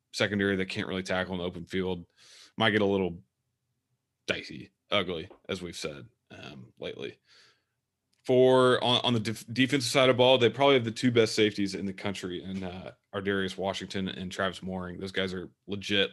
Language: English